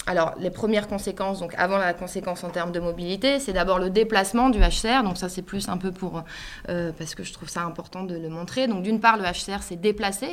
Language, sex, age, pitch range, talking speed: French, female, 20-39, 170-210 Hz, 245 wpm